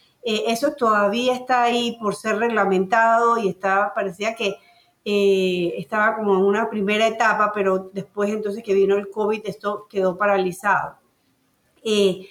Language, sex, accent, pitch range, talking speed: Spanish, female, American, 195-240 Hz, 145 wpm